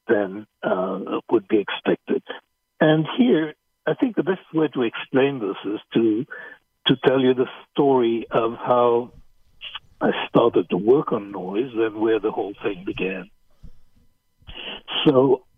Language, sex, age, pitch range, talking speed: English, male, 60-79, 120-175 Hz, 145 wpm